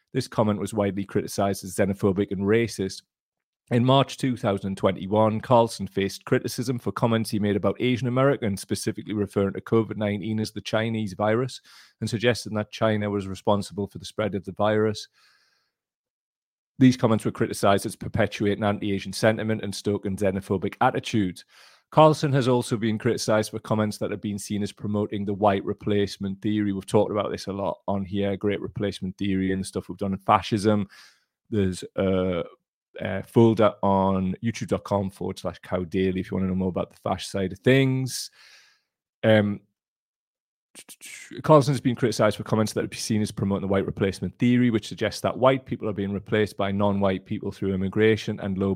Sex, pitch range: male, 100-115 Hz